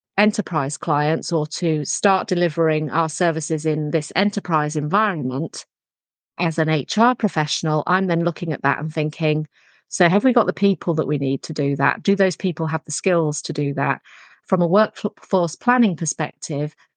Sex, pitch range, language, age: female, 155-190 Hz, English, 40-59